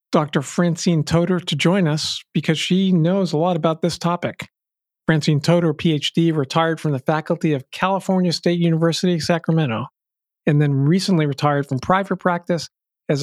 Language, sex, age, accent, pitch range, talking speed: English, male, 50-69, American, 150-185 Hz, 155 wpm